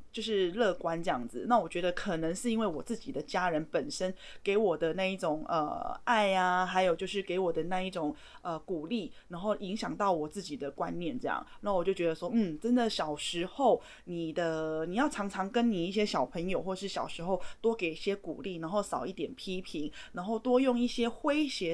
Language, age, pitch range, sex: Chinese, 20-39, 170-220 Hz, female